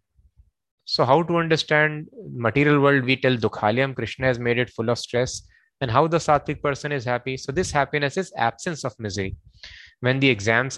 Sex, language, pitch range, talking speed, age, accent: male, English, 110-150 Hz, 185 wpm, 20-39, Indian